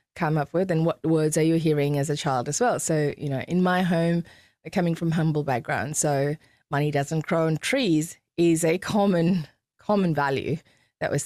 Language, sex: English, female